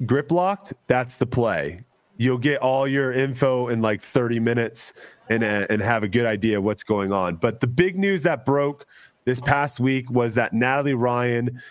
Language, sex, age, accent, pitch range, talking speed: English, male, 30-49, American, 115-140 Hz, 185 wpm